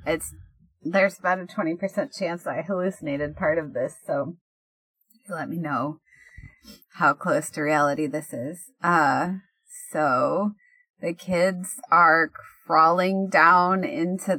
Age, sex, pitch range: 30-49, female, 155-210 Hz